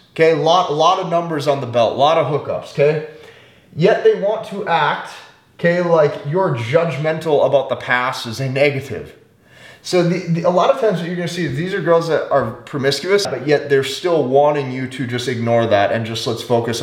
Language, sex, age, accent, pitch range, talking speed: English, male, 30-49, American, 140-205 Hz, 220 wpm